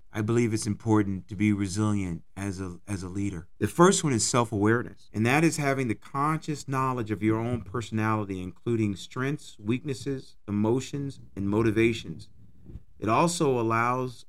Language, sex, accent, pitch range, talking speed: English, male, American, 105-135 Hz, 155 wpm